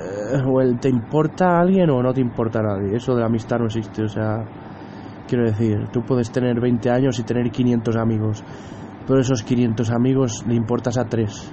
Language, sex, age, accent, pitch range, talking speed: English, male, 20-39, Spanish, 110-130 Hz, 205 wpm